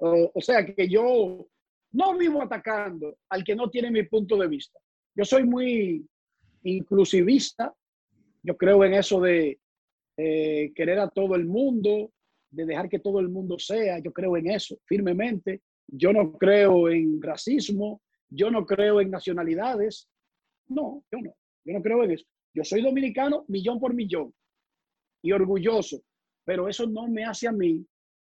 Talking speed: 160 wpm